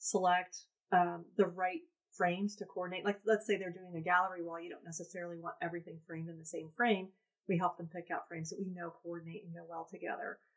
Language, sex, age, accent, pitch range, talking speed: English, female, 30-49, American, 165-195 Hz, 220 wpm